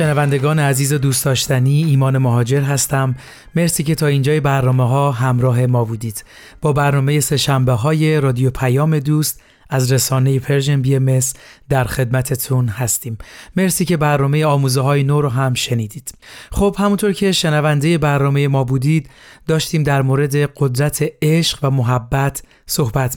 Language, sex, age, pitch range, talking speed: Persian, male, 30-49, 130-155 Hz, 140 wpm